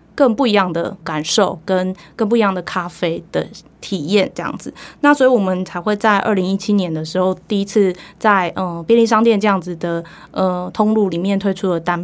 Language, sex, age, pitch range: Chinese, female, 20-39, 180-225 Hz